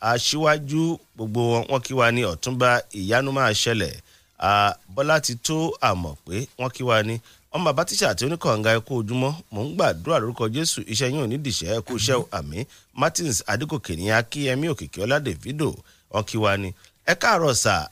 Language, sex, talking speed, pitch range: English, male, 135 wpm, 100-140 Hz